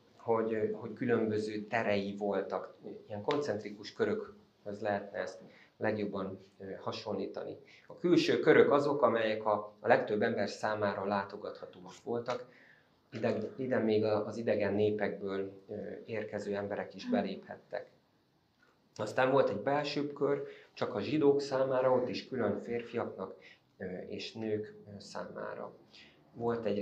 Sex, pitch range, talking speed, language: male, 100-130 Hz, 120 wpm, Hungarian